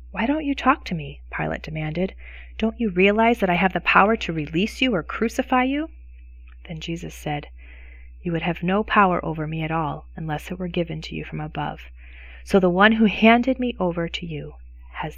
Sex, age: female, 30-49